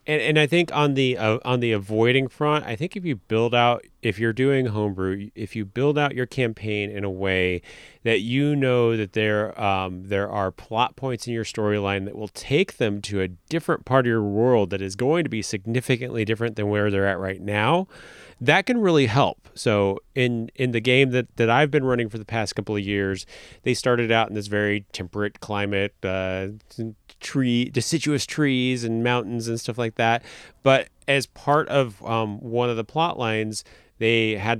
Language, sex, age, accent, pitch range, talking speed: English, male, 30-49, American, 105-130 Hz, 205 wpm